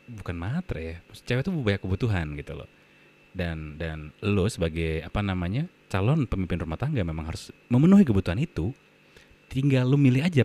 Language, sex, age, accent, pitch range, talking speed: Indonesian, male, 30-49, native, 85-115 Hz, 160 wpm